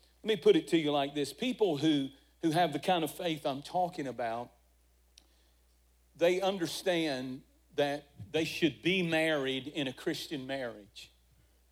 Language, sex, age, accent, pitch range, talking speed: English, male, 50-69, American, 135-180 Hz, 155 wpm